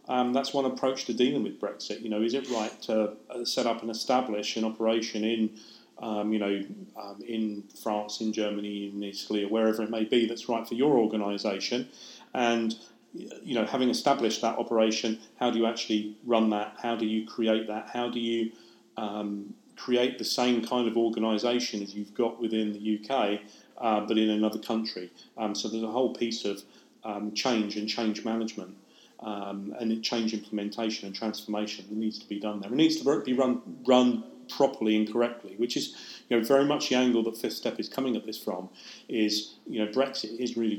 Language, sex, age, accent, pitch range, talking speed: English, male, 30-49, British, 105-115 Hz, 200 wpm